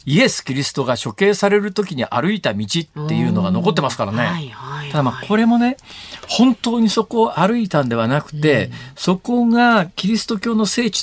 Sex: male